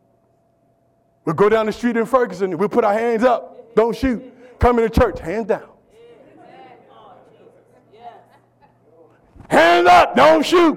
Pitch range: 205-300 Hz